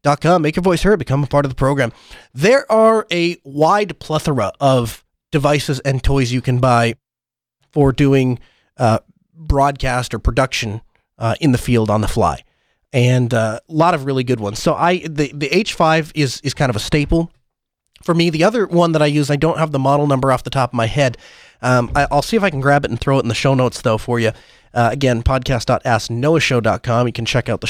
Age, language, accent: 30-49, English, American